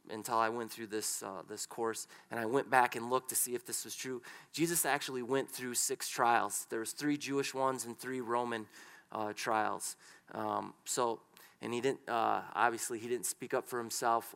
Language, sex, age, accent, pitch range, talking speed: English, male, 30-49, American, 115-130 Hz, 205 wpm